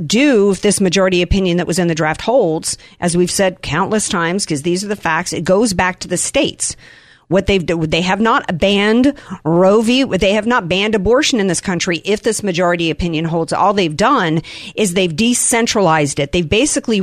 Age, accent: 50-69, American